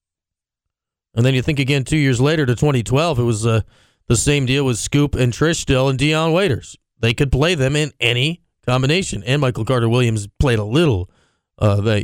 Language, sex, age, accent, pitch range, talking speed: English, male, 30-49, American, 120-155 Hz, 200 wpm